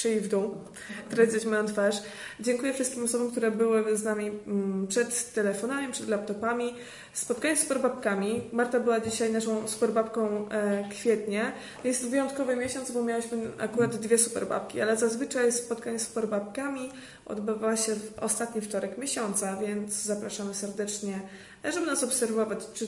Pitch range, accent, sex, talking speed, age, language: 210-240 Hz, native, female, 135 wpm, 20-39, Polish